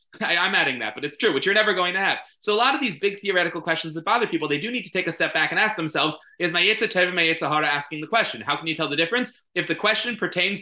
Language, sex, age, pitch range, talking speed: English, male, 30-49, 145-200 Hz, 310 wpm